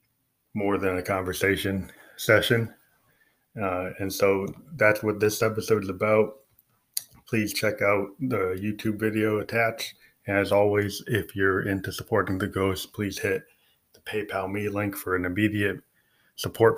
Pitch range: 95-110 Hz